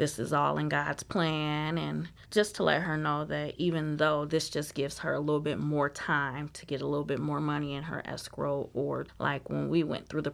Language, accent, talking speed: English, American, 240 wpm